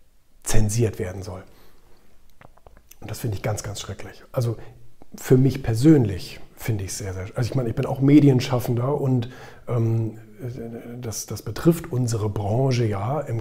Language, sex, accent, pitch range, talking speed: German, male, German, 110-135 Hz, 150 wpm